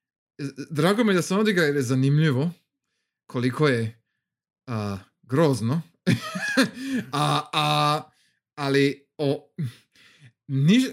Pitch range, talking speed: 125-185 Hz, 95 wpm